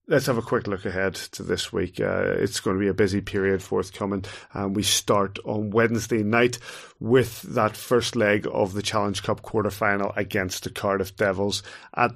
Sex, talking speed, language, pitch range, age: male, 195 wpm, English, 100-120 Hz, 30-49